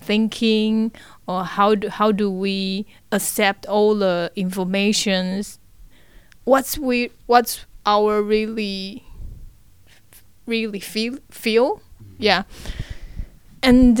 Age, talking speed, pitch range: 20-39, 90 wpm, 175-220 Hz